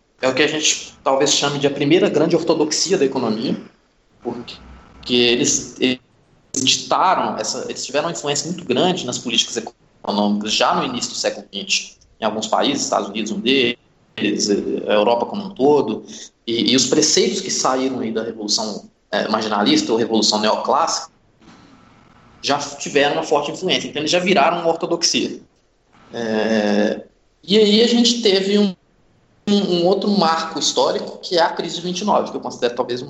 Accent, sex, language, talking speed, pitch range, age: Brazilian, male, Portuguese, 170 wpm, 120-180 Hz, 20-39